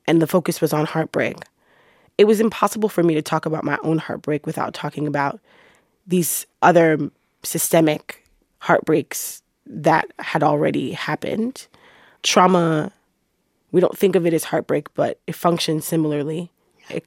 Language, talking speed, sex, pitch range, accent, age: English, 145 wpm, female, 155-180 Hz, American, 20-39